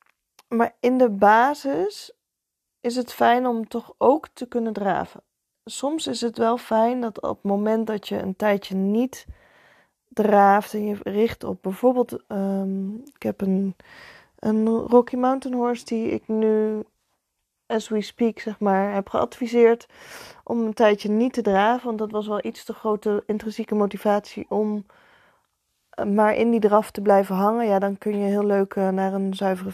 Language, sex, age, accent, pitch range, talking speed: Dutch, female, 20-39, Dutch, 205-235 Hz, 165 wpm